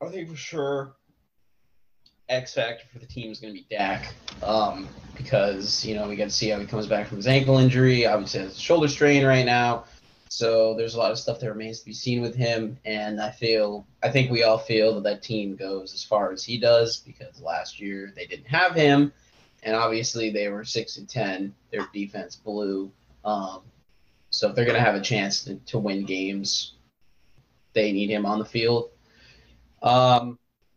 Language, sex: English, male